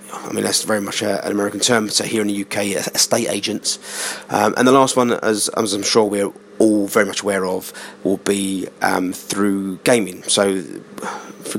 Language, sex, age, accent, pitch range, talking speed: English, male, 40-59, British, 100-125 Hz, 190 wpm